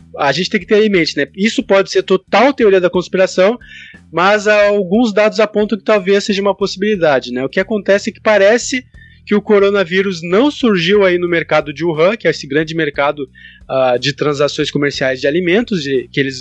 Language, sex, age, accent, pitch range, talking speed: Portuguese, male, 20-39, Brazilian, 150-210 Hz, 200 wpm